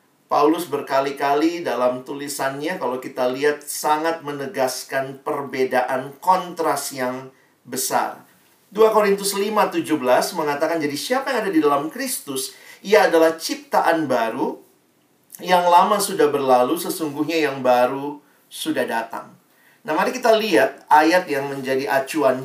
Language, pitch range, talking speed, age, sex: Indonesian, 130-180 Hz, 120 wpm, 40-59, male